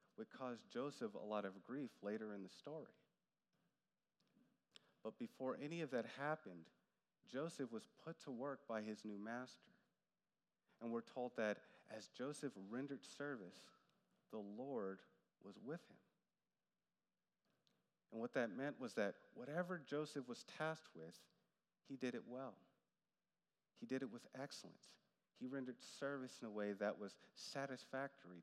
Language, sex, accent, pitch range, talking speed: English, male, American, 115-145 Hz, 145 wpm